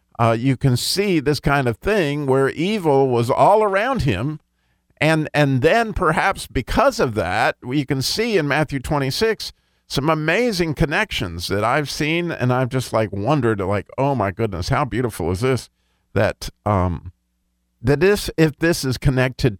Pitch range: 105-135 Hz